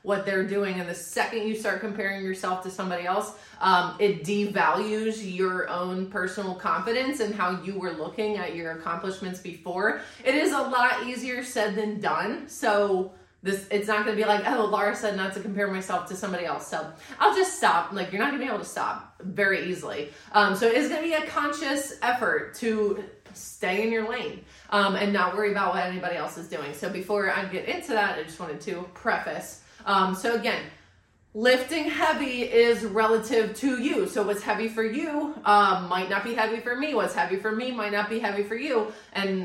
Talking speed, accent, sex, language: 205 wpm, American, female, English